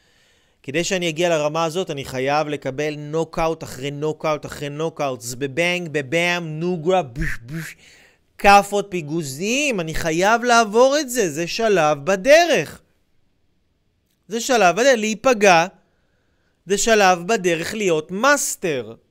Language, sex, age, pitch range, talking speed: Hebrew, male, 30-49, 150-205 Hz, 120 wpm